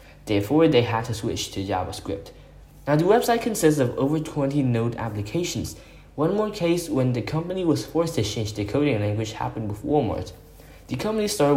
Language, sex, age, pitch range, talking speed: English, male, 10-29, 110-160 Hz, 180 wpm